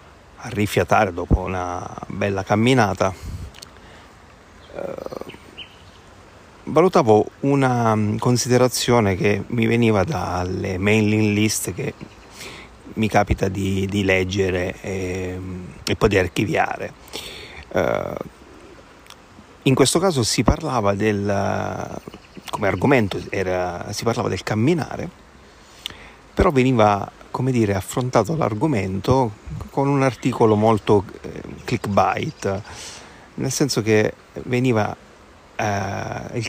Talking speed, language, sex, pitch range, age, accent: 95 wpm, Italian, male, 95-120 Hz, 40-59, native